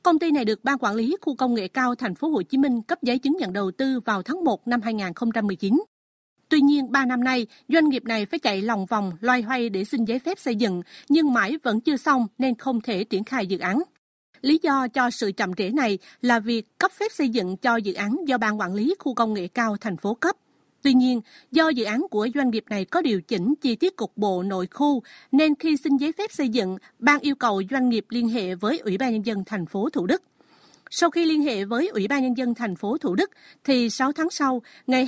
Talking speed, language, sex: 250 wpm, Vietnamese, female